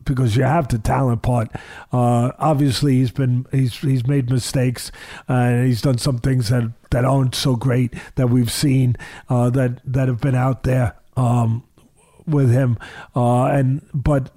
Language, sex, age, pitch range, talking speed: English, male, 50-69, 125-140 Hz, 165 wpm